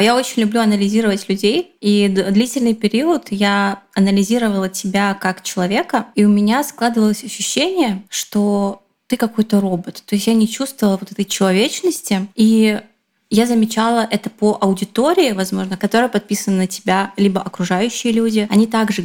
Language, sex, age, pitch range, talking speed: Russian, female, 20-39, 200-230 Hz, 145 wpm